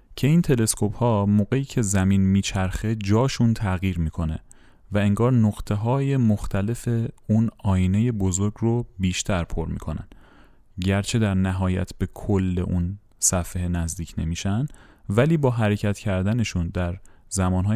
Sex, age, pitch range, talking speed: male, 30-49, 90-115 Hz, 130 wpm